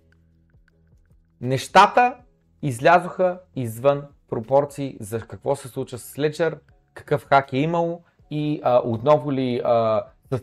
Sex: male